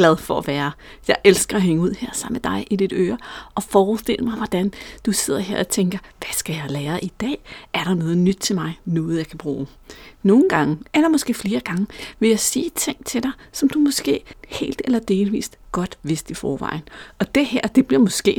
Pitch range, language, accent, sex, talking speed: 180-235 Hz, Danish, native, female, 225 wpm